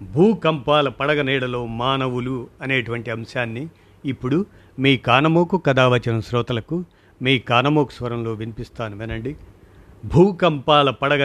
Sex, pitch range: male, 110-150 Hz